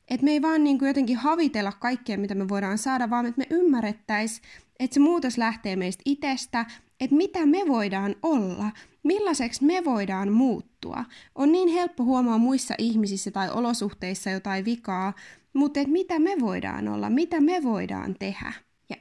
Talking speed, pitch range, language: 165 wpm, 210-270 Hz, Finnish